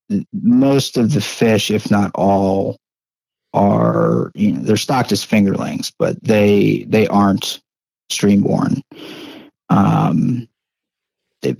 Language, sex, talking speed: English, male, 110 wpm